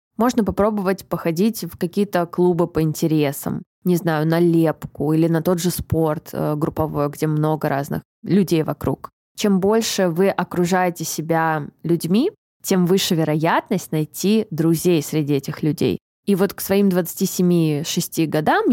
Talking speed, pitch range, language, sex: 140 wpm, 165-200 Hz, Russian, female